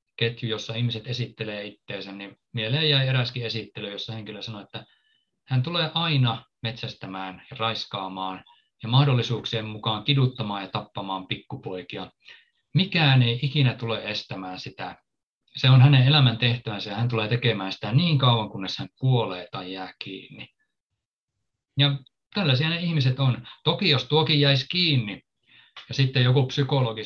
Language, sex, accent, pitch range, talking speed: Finnish, male, native, 110-135 Hz, 140 wpm